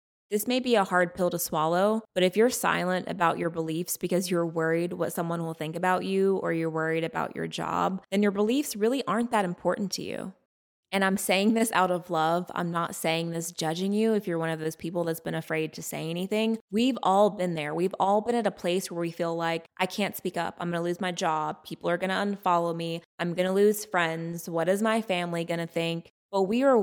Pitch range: 170-215 Hz